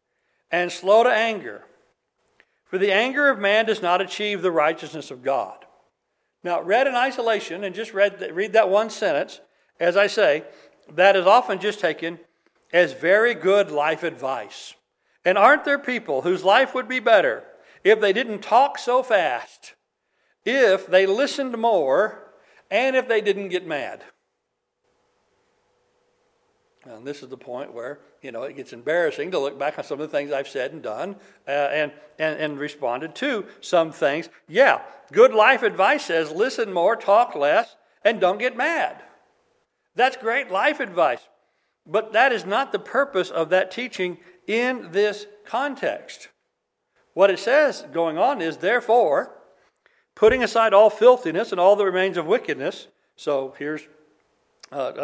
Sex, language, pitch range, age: male, English, 175-270 Hz, 60-79